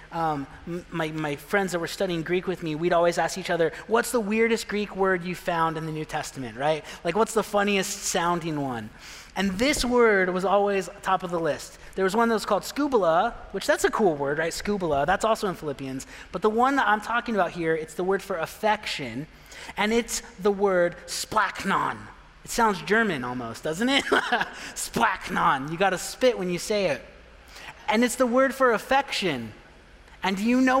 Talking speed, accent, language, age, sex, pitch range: 195 wpm, American, English, 30-49, male, 170-225 Hz